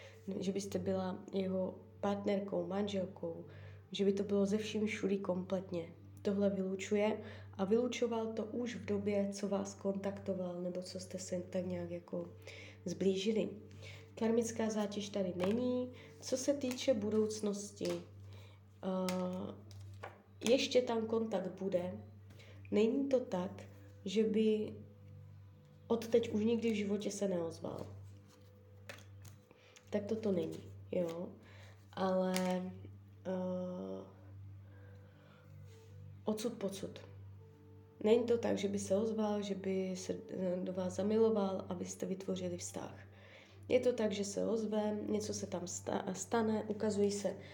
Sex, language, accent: female, Czech, native